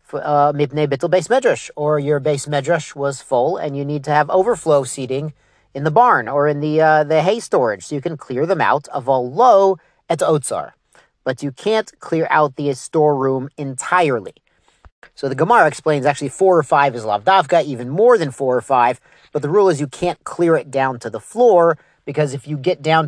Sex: male